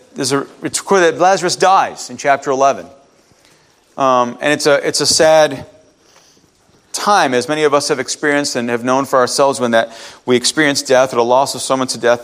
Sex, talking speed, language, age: male, 200 wpm, English, 40-59